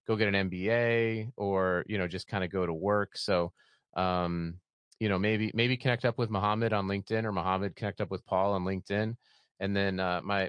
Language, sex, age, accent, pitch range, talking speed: English, male, 30-49, American, 95-110 Hz, 210 wpm